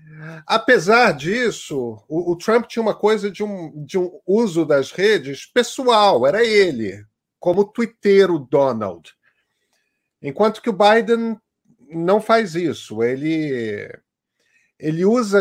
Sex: male